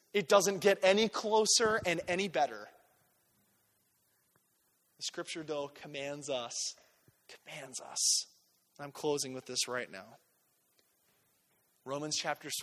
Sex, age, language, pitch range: male, 20-39, English, 140-185 Hz